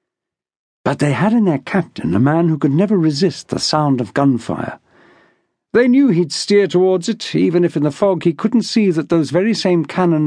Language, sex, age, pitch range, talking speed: English, male, 50-69, 150-200 Hz, 205 wpm